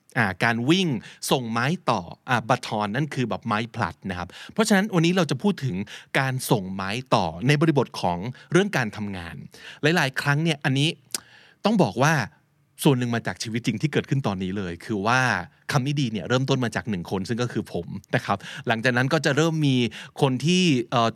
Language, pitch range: Thai, 110-155 Hz